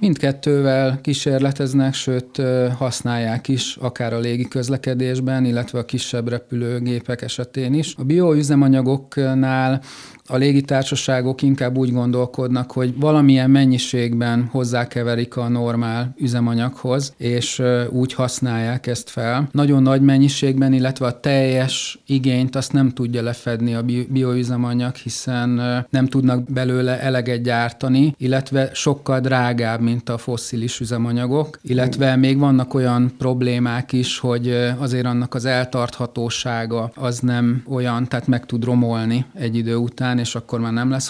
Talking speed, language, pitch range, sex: 125 wpm, English, 120-135 Hz, male